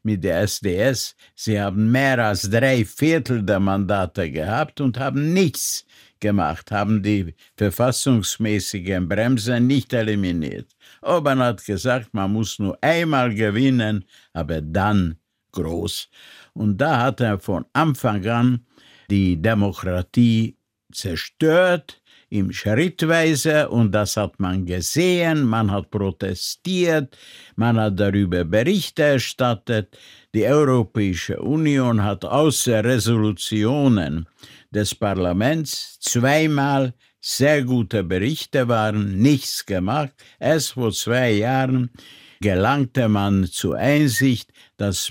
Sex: male